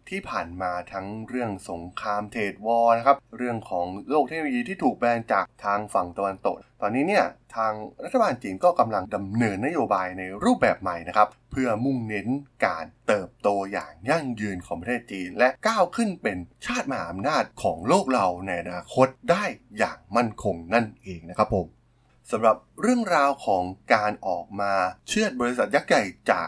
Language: Thai